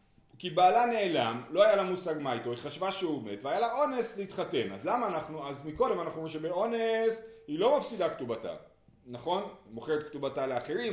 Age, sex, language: 40-59, male, Hebrew